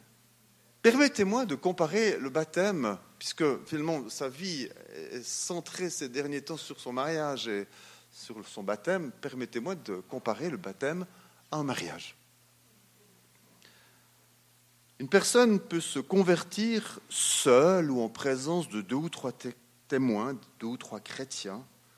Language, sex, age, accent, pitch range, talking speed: French, male, 40-59, French, 120-170 Hz, 130 wpm